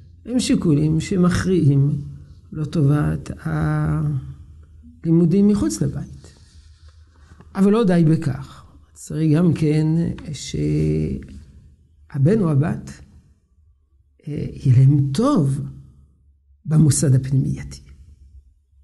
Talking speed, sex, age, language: 75 wpm, male, 50-69, Hebrew